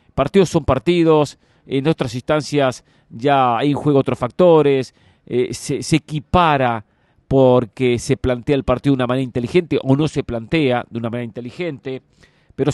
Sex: male